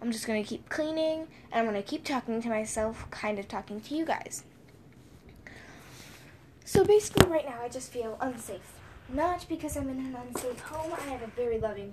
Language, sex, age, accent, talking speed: English, female, 10-29, American, 190 wpm